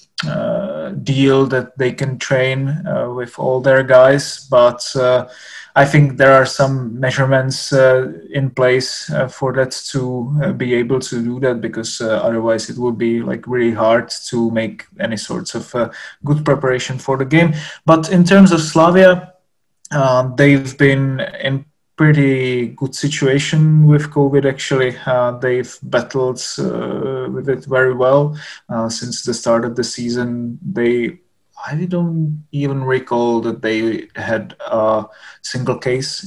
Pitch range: 125-140 Hz